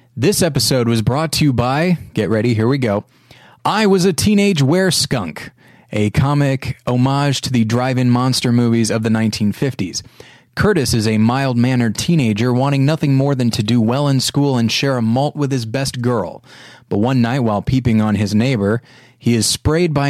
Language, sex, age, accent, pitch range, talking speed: English, male, 30-49, American, 115-140 Hz, 190 wpm